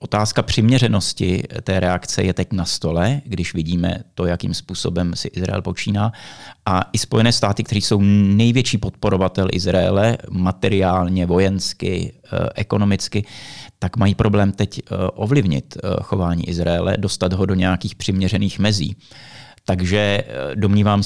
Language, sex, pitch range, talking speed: Czech, male, 90-110 Hz, 125 wpm